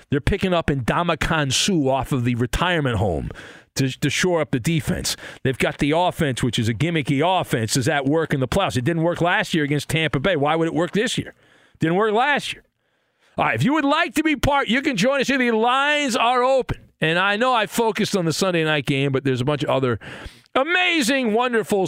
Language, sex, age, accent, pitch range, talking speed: English, male, 40-59, American, 140-220 Hz, 240 wpm